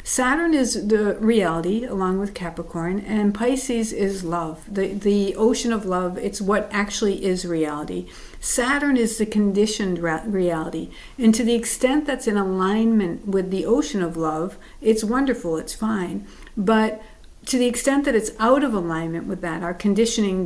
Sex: female